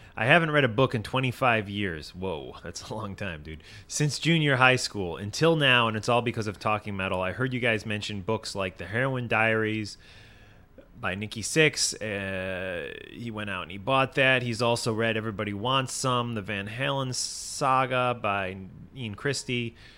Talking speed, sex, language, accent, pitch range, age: 180 wpm, male, English, American, 95-125 Hz, 30-49